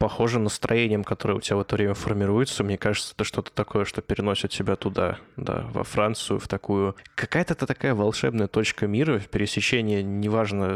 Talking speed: 175 wpm